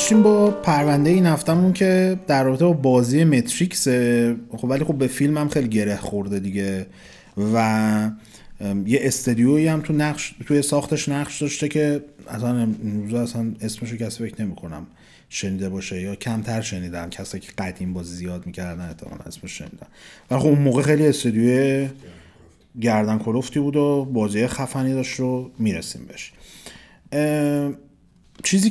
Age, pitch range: 30-49, 110-145 Hz